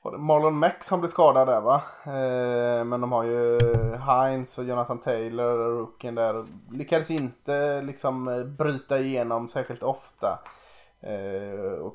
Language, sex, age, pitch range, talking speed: Swedish, male, 20-39, 115-135 Hz, 145 wpm